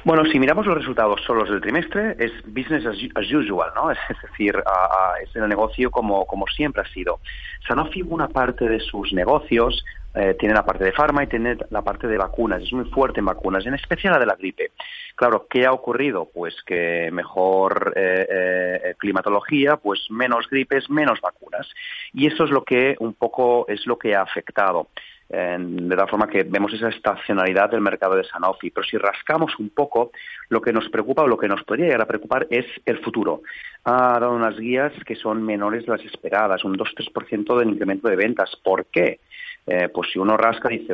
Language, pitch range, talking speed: Spanish, 95-130 Hz, 200 wpm